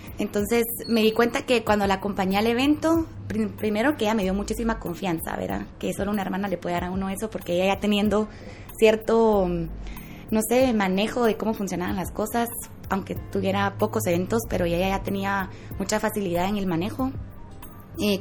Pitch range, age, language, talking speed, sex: 180-225 Hz, 20-39, Spanish, 180 wpm, female